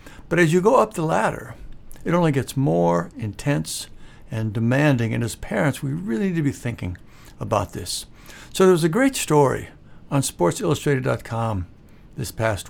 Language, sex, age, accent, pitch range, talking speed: English, male, 60-79, American, 115-150 Hz, 160 wpm